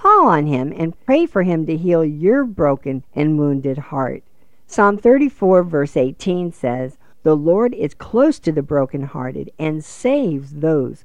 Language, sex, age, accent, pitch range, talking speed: English, female, 50-69, American, 140-185 Hz, 155 wpm